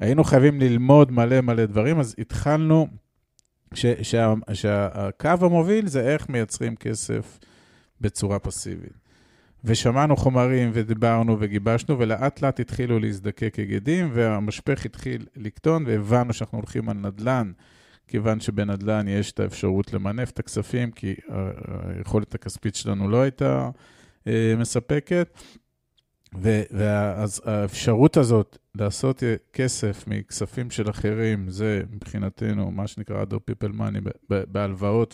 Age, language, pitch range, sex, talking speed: 40-59, Hebrew, 105-125 Hz, male, 115 wpm